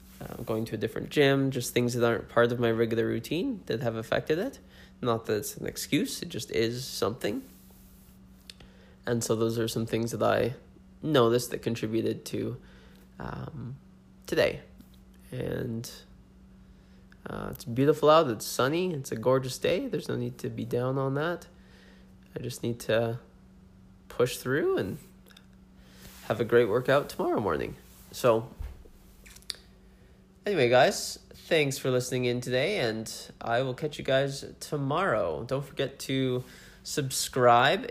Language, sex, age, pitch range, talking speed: English, male, 20-39, 110-125 Hz, 145 wpm